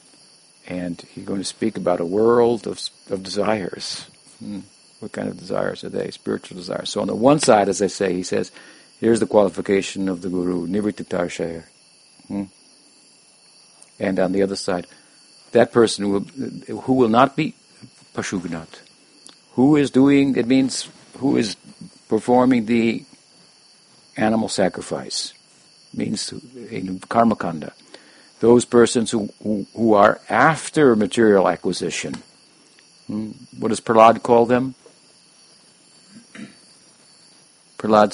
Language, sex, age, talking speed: English, male, 50-69, 130 wpm